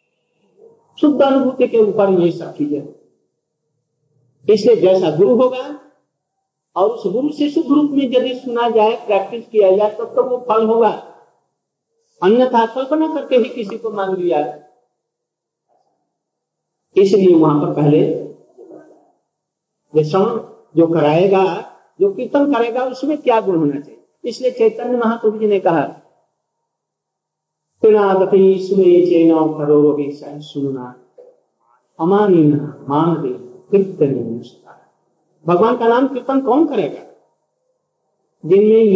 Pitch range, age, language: 175-265 Hz, 50-69, Hindi